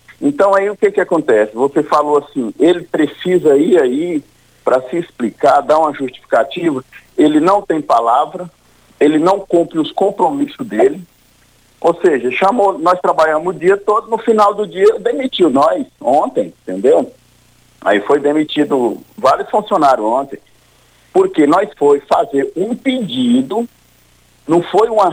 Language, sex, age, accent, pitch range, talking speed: Portuguese, male, 50-69, Brazilian, 145-220 Hz, 145 wpm